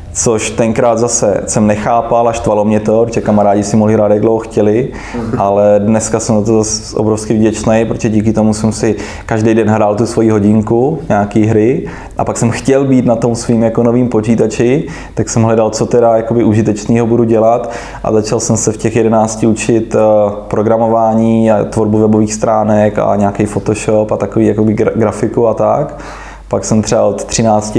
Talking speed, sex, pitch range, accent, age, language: 175 wpm, male, 105-115 Hz, native, 20-39, Czech